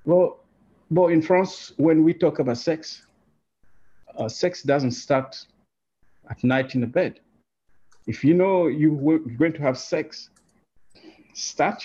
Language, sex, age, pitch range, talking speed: English, male, 60-79, 140-195 Hz, 135 wpm